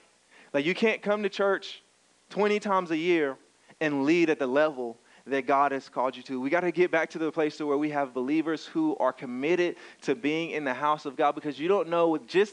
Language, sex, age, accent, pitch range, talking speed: English, male, 30-49, American, 140-180 Hz, 240 wpm